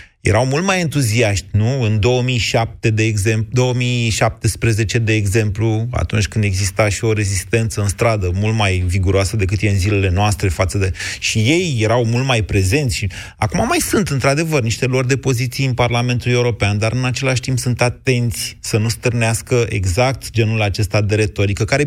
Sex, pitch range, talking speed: male, 110-145 Hz, 175 wpm